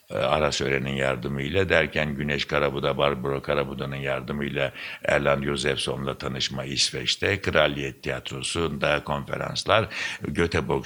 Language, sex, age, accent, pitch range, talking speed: Turkish, male, 60-79, native, 70-90 Hz, 95 wpm